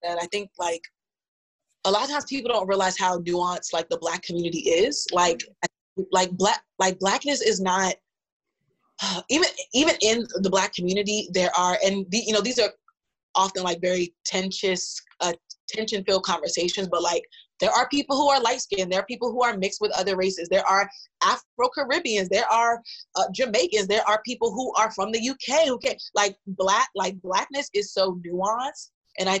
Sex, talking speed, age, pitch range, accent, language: female, 185 wpm, 20-39, 185-235 Hz, American, English